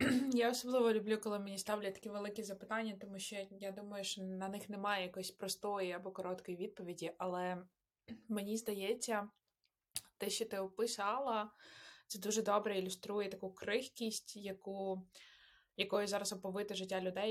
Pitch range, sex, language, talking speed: 180-205 Hz, female, Ukrainian, 140 wpm